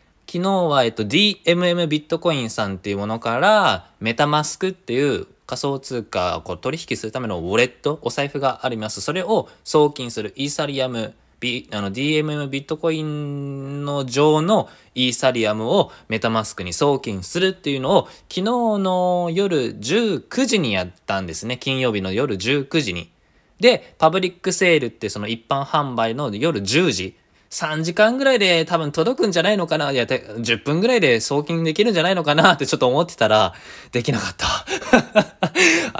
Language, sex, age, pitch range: Japanese, male, 20-39, 115-180 Hz